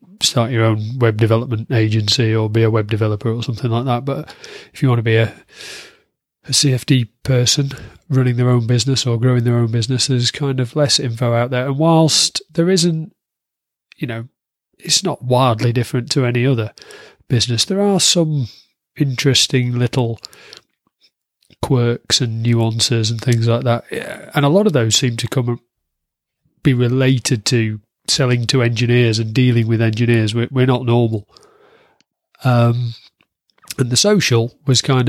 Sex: male